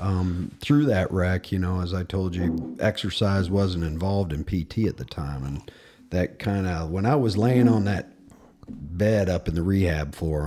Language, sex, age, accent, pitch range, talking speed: English, male, 40-59, American, 75-90 Hz, 195 wpm